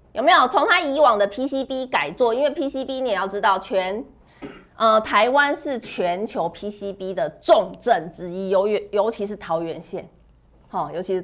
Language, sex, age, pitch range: Chinese, female, 30-49, 185-260 Hz